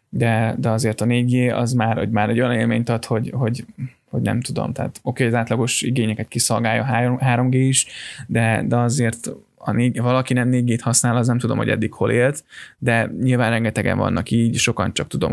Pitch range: 115-125 Hz